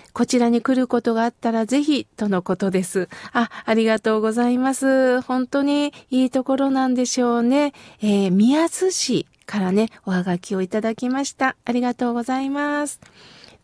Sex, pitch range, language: female, 220-290 Hz, Japanese